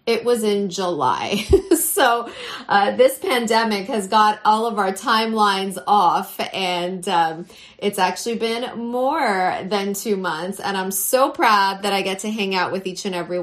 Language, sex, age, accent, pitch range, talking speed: English, female, 30-49, American, 185-230 Hz, 170 wpm